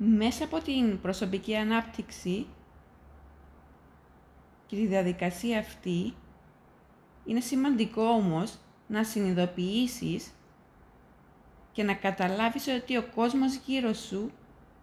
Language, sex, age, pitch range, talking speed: Greek, female, 20-39, 155-230 Hz, 90 wpm